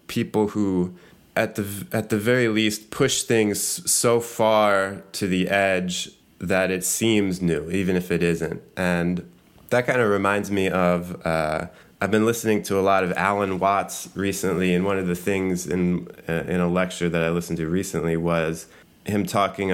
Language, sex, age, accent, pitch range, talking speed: English, male, 20-39, American, 90-105 Hz, 180 wpm